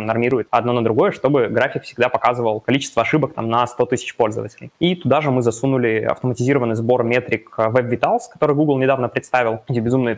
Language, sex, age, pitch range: Russian, male, 20-39, 110-130 Hz